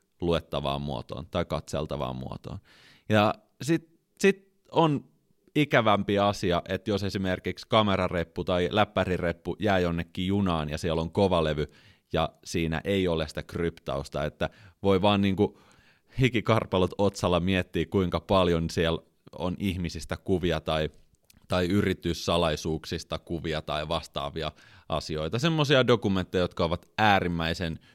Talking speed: 115 wpm